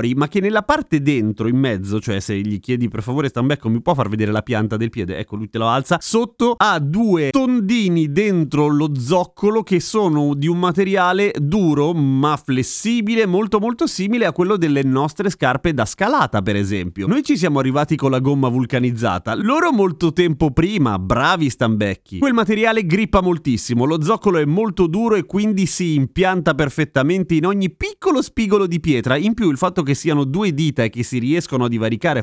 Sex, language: male, Italian